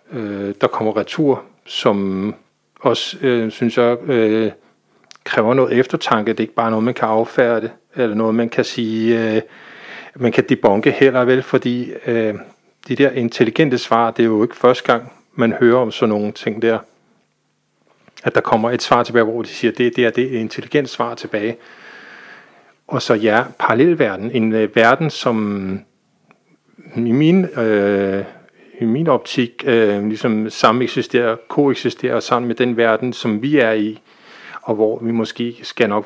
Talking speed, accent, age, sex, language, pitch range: 165 wpm, native, 40-59, male, Danish, 105-125 Hz